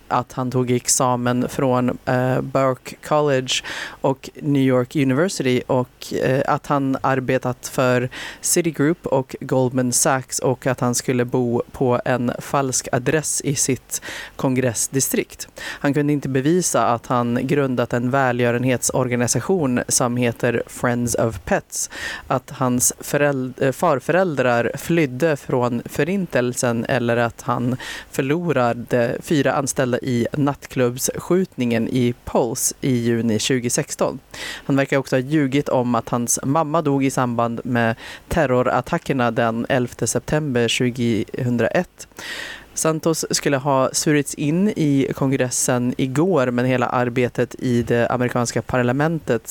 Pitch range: 120-140 Hz